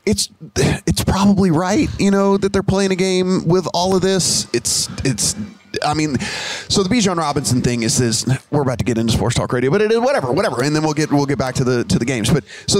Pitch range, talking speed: 125-160 Hz, 255 wpm